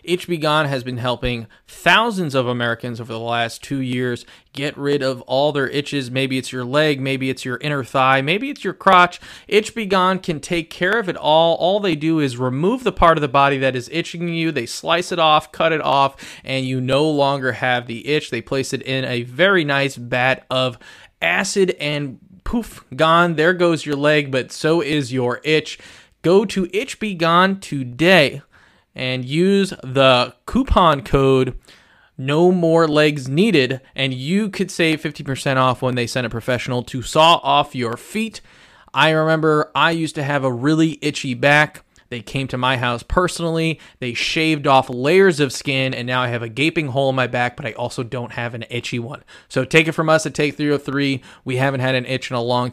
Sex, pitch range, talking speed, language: male, 125-160 Hz, 205 wpm, English